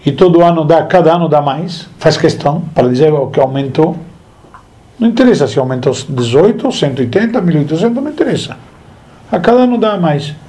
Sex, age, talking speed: male, 50-69, 160 wpm